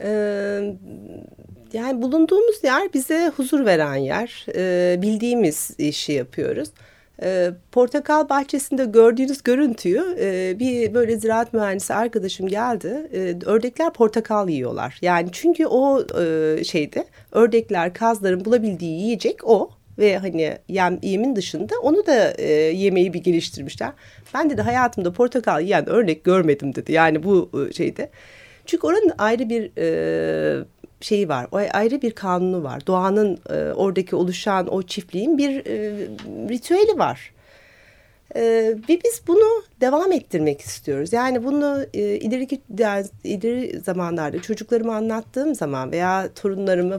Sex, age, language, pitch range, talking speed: female, 40-59, Turkish, 180-255 Hz, 125 wpm